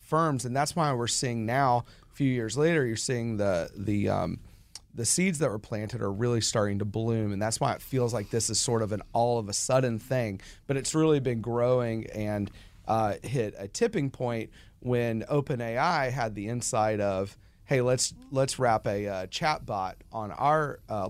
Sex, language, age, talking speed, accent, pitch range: male, English, 30-49, 200 wpm, American, 110-140 Hz